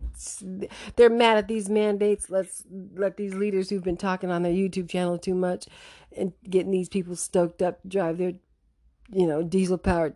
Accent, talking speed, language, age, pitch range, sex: American, 175 wpm, English, 50-69, 155-225 Hz, female